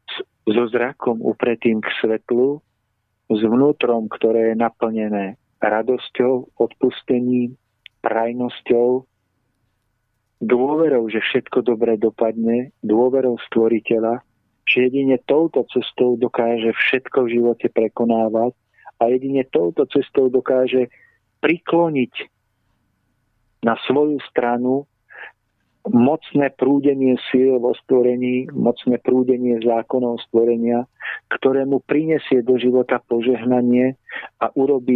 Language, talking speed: Slovak, 95 wpm